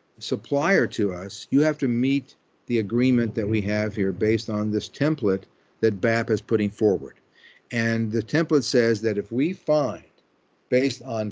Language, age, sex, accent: English, 50-69, male, American